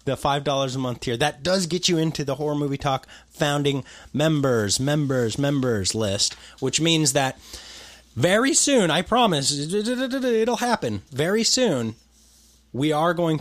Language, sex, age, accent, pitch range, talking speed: English, male, 30-49, American, 105-150 Hz, 150 wpm